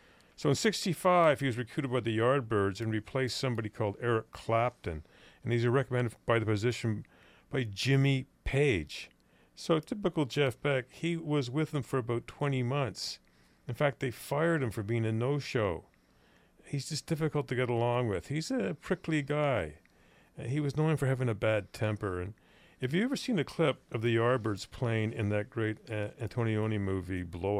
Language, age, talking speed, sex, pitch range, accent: English, 50-69, 180 wpm, male, 100-135 Hz, American